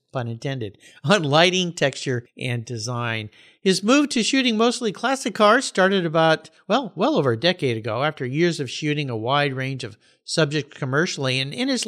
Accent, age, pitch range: American, 50-69, 140-210 Hz